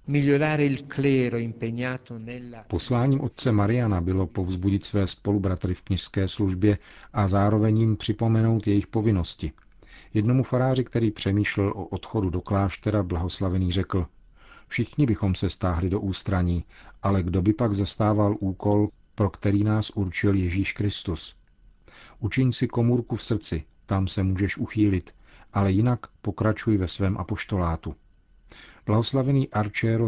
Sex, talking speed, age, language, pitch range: male, 120 wpm, 50-69, Czech, 95-115 Hz